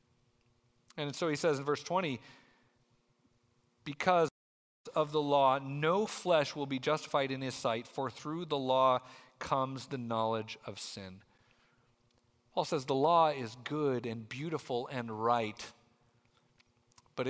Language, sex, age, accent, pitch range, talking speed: English, male, 40-59, American, 120-155 Hz, 135 wpm